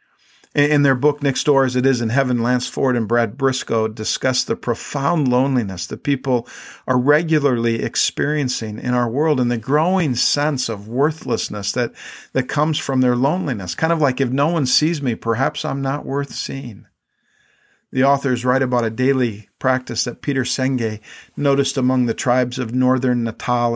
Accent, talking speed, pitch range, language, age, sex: American, 175 wpm, 120-145 Hz, English, 50-69, male